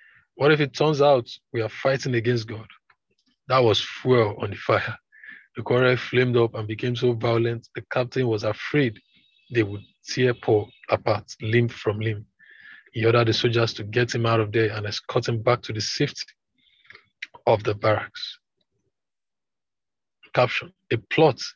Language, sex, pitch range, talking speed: English, male, 110-125 Hz, 165 wpm